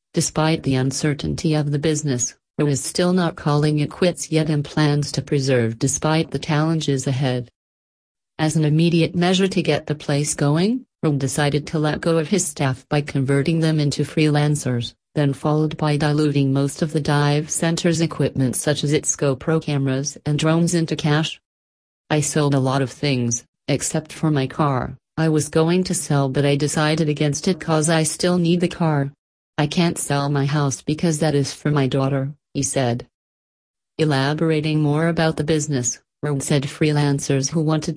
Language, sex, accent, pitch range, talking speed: English, female, American, 140-160 Hz, 175 wpm